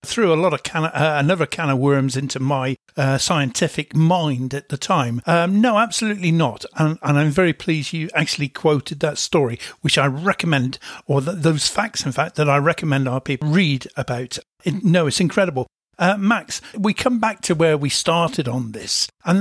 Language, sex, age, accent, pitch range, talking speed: English, male, 50-69, British, 140-190 Hz, 200 wpm